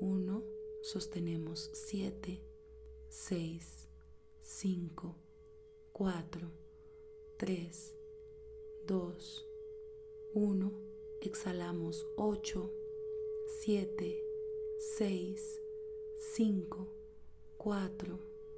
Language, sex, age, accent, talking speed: Spanish, female, 30-49, Venezuelan, 50 wpm